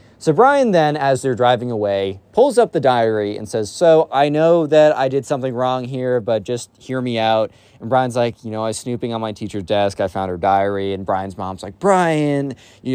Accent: American